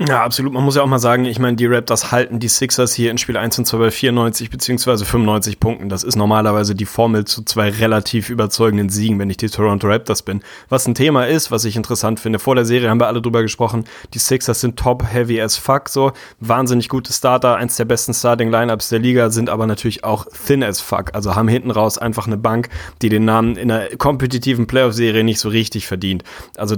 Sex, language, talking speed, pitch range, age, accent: male, German, 225 wpm, 110-125 Hz, 30-49, German